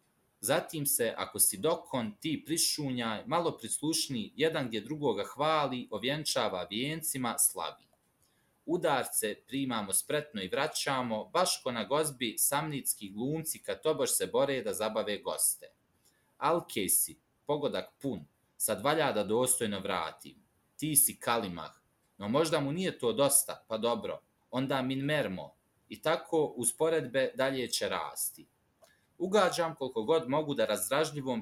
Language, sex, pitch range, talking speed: Croatian, male, 120-160 Hz, 130 wpm